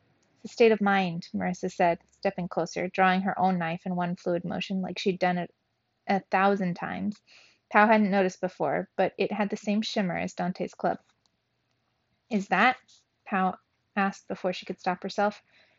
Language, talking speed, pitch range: English, 170 wpm, 180-210 Hz